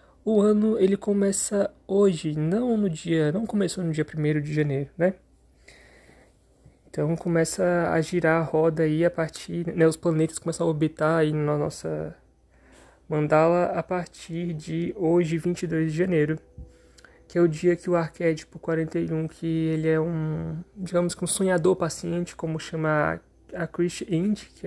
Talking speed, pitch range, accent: 160 wpm, 155-185 Hz, Brazilian